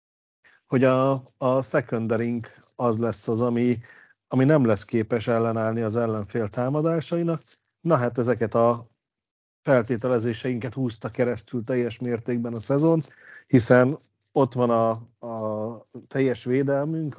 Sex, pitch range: male, 115-130 Hz